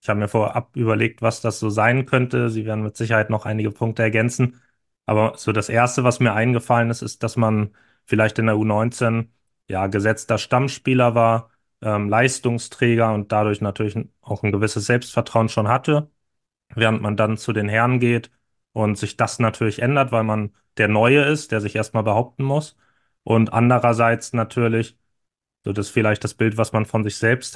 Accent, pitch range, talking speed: German, 105-115 Hz, 180 wpm